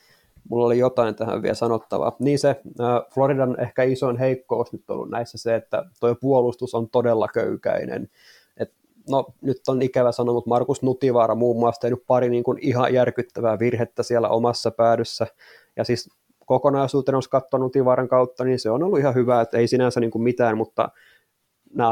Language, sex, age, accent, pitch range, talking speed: Finnish, male, 20-39, native, 115-130 Hz, 180 wpm